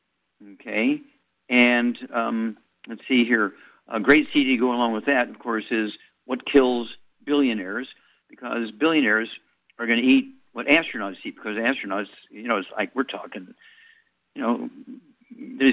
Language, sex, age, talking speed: English, male, 50-69, 150 wpm